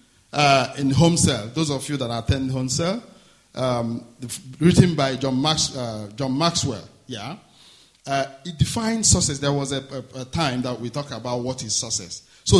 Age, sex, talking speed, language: 50-69, male, 170 wpm, English